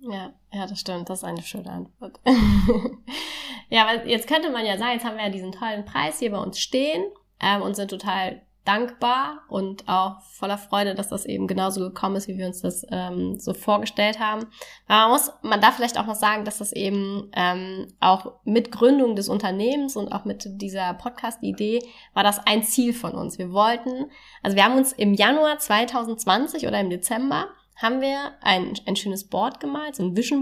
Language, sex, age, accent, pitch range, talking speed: German, female, 20-39, German, 195-250 Hz, 195 wpm